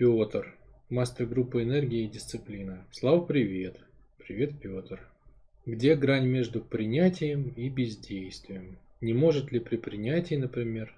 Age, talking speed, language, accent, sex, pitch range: 20-39, 120 wpm, Russian, native, male, 110-145 Hz